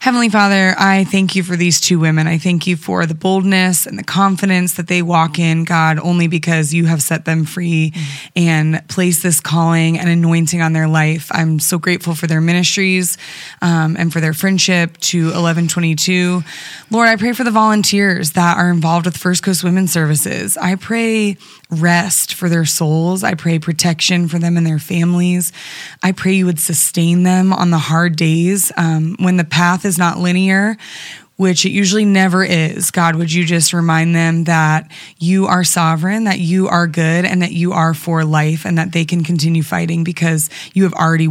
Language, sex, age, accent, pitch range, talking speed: English, female, 20-39, American, 165-190 Hz, 195 wpm